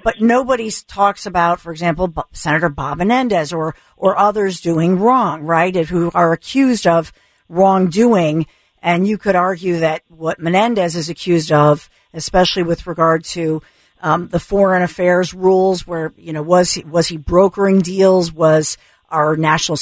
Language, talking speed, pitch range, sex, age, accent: English, 150 wpm, 170-210 Hz, female, 50-69, American